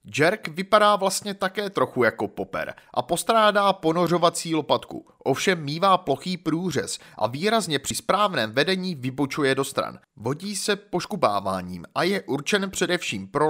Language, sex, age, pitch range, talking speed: Czech, male, 30-49, 130-185 Hz, 140 wpm